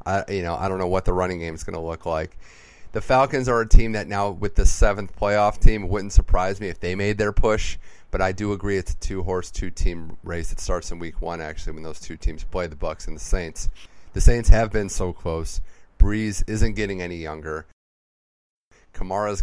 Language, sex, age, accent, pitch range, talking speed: English, male, 30-49, American, 85-105 Hz, 220 wpm